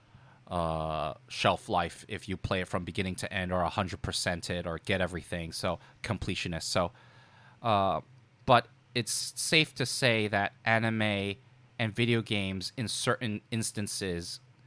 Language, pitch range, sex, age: English, 95-125 Hz, male, 30-49